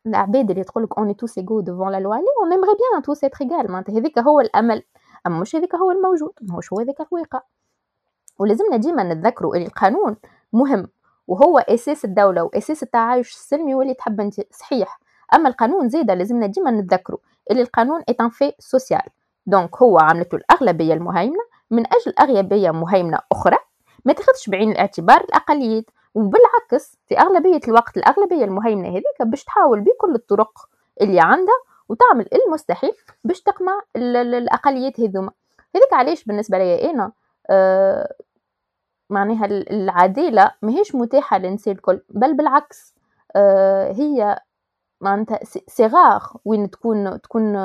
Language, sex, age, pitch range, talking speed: Arabic, female, 20-39, 195-285 Hz, 140 wpm